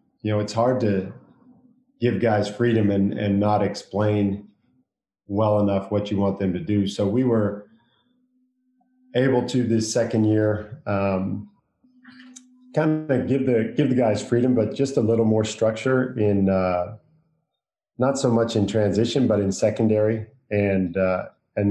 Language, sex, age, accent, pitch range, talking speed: English, male, 40-59, American, 95-115 Hz, 155 wpm